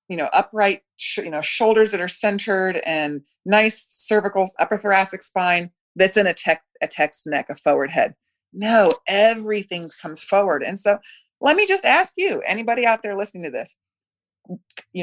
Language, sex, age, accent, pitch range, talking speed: English, female, 30-49, American, 165-230 Hz, 170 wpm